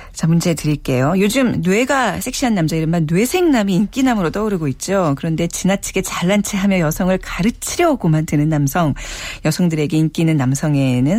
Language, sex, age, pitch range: Korean, female, 40-59, 160-240 Hz